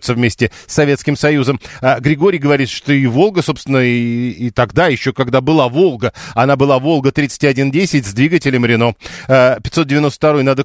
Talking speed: 160 wpm